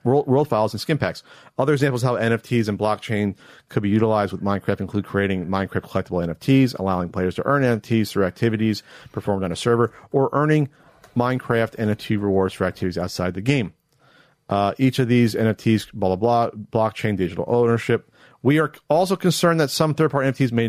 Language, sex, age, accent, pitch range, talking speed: English, male, 40-59, American, 105-160 Hz, 185 wpm